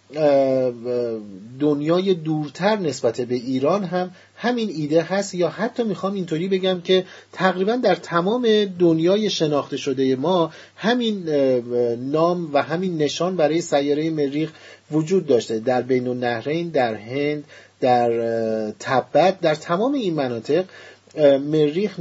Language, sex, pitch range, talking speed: Persian, male, 140-180 Hz, 120 wpm